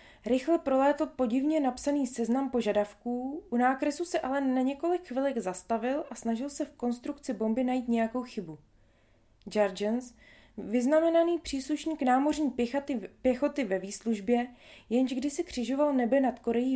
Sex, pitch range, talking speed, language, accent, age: female, 195-265 Hz, 135 wpm, Czech, native, 20-39